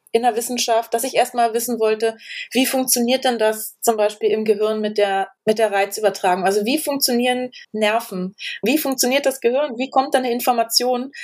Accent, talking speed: German, 180 wpm